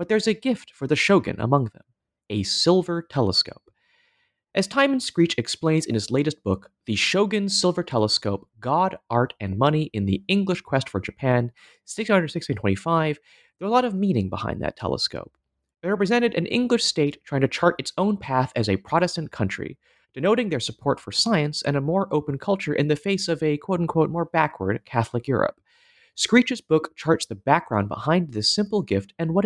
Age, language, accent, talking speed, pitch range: 30-49, English, American, 185 wpm, 115-185 Hz